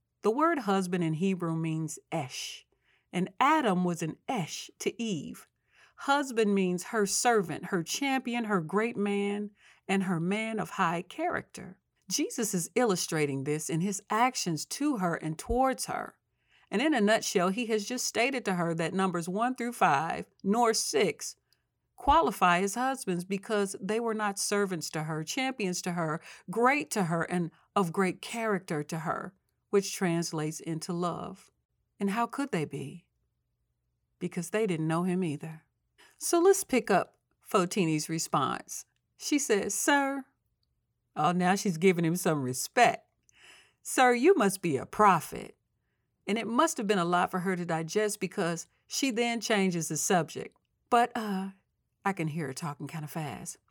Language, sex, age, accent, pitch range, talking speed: English, female, 40-59, American, 170-230 Hz, 160 wpm